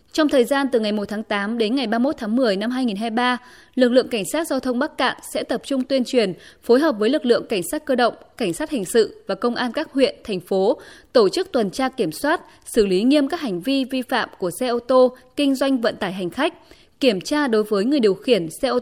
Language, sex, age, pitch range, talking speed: Vietnamese, female, 20-39, 220-280 Hz, 260 wpm